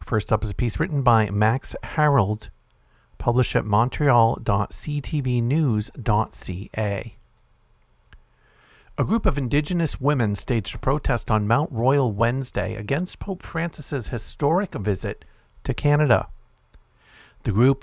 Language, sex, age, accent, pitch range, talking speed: English, male, 50-69, American, 110-135 Hz, 110 wpm